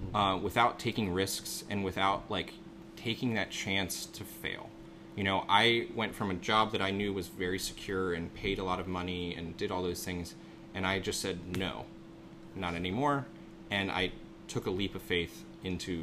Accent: American